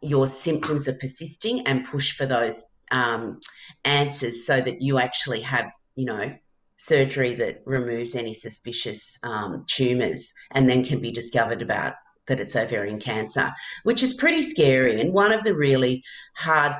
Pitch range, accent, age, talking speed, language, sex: 120-155 Hz, Australian, 40-59, 155 wpm, English, female